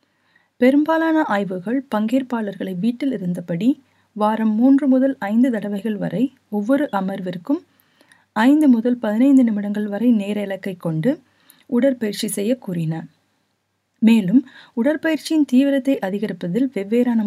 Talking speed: 100 wpm